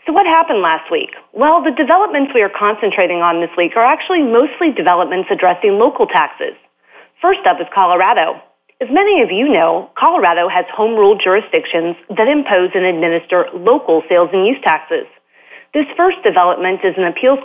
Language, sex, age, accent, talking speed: English, female, 30-49, American, 170 wpm